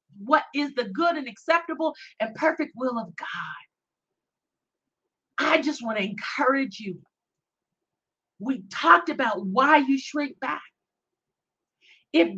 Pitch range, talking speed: 265-335 Hz, 120 wpm